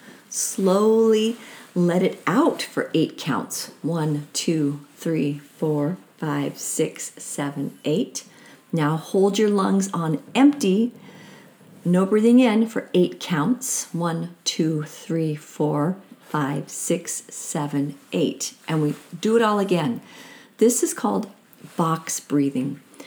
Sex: female